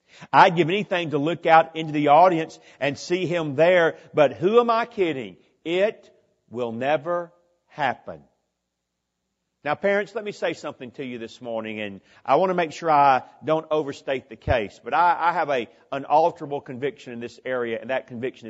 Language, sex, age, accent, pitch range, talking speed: English, male, 50-69, American, 125-165 Hz, 185 wpm